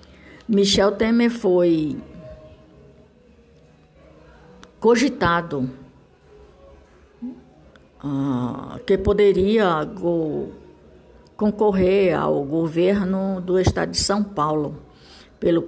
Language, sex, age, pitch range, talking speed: Portuguese, female, 60-79, 150-210 Hz, 55 wpm